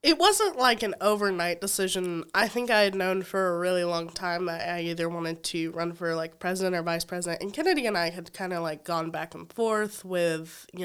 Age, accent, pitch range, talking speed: 20-39, American, 170-205 Hz, 230 wpm